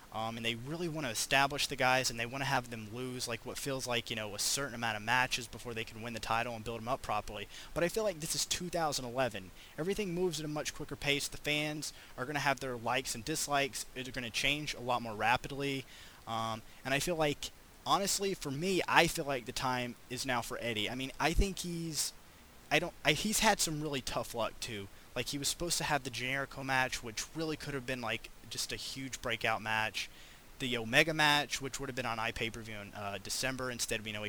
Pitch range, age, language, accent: 115-145 Hz, 20-39, English, American